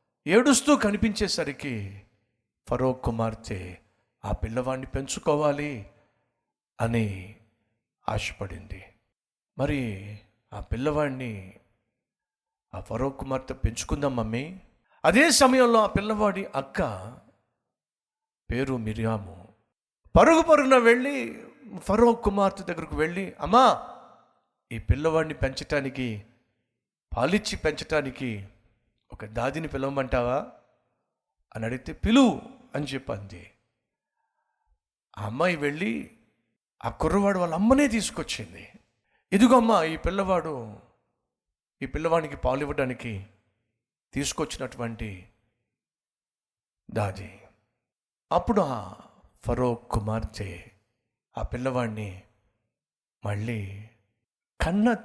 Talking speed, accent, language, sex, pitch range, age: 75 wpm, native, Telugu, male, 110-160 Hz, 60-79